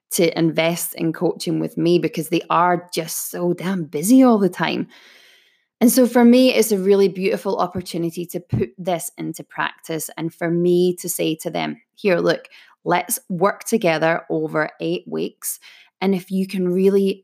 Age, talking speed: 20-39, 175 wpm